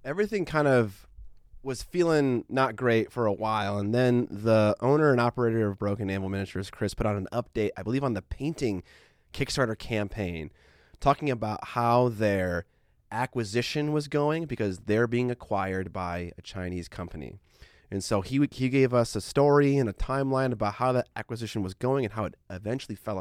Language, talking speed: English, 180 wpm